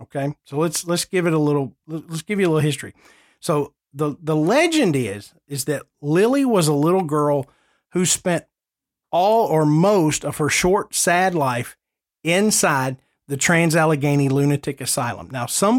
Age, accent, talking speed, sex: 50-69, American, 165 wpm, male